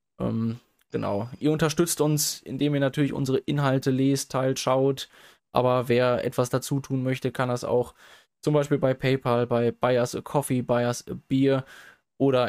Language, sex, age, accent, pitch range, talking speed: German, male, 20-39, German, 120-140 Hz, 170 wpm